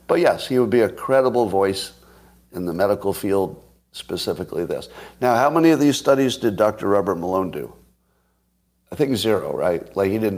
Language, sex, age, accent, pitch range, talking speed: English, male, 50-69, American, 90-125 Hz, 185 wpm